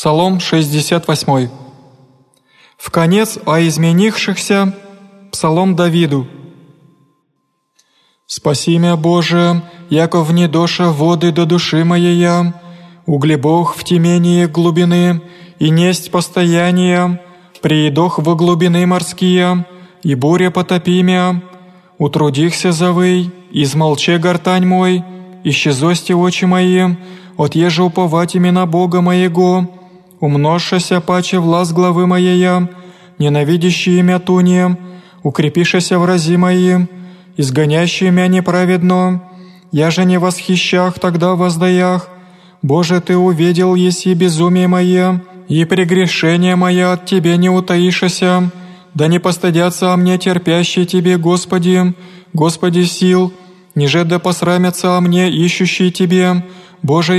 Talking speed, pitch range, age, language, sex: 105 wpm, 170-180 Hz, 20-39, Greek, male